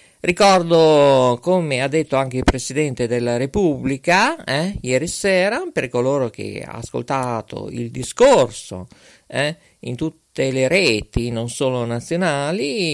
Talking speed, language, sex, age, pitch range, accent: 125 wpm, Italian, male, 50-69, 120-160 Hz, native